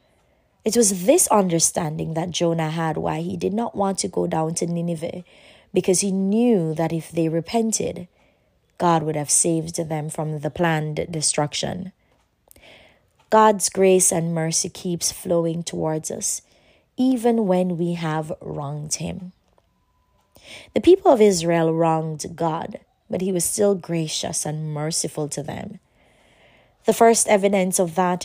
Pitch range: 165-200 Hz